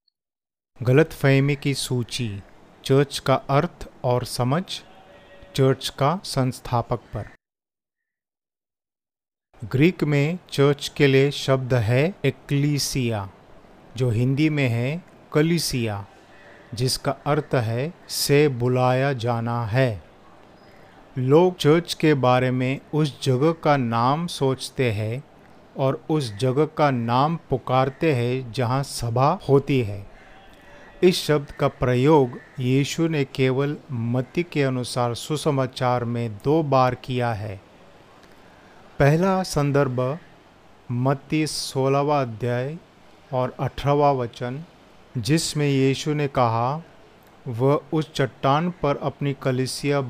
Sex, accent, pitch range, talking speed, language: male, native, 125-150 Hz, 105 wpm, Hindi